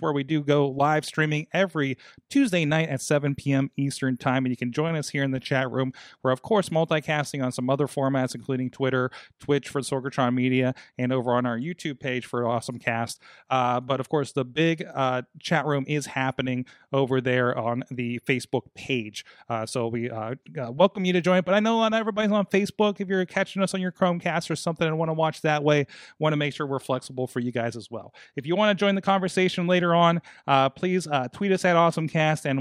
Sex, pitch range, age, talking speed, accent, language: male, 130-160 Hz, 30-49, 225 wpm, American, English